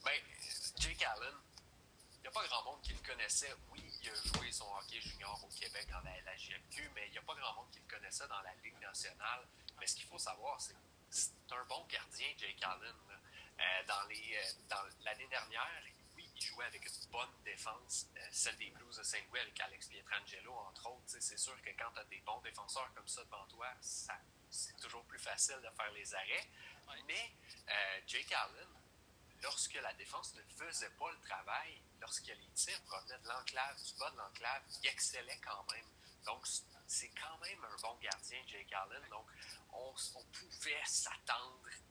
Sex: male